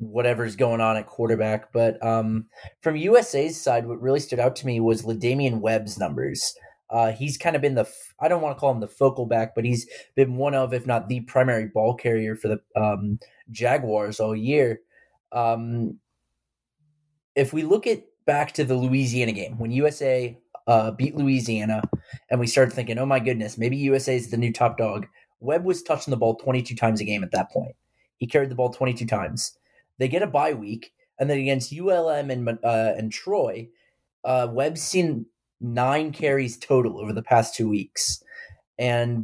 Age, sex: 20-39, male